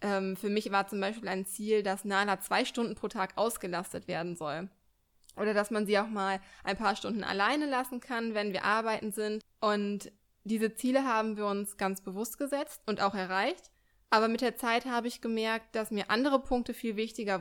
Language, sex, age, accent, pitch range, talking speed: German, female, 20-39, German, 200-230 Hz, 195 wpm